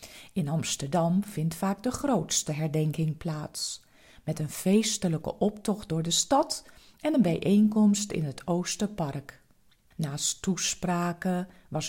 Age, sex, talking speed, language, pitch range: 40-59, female, 120 wpm, Dutch, 155-200 Hz